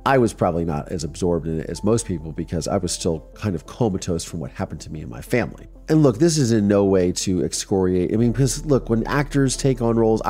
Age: 30-49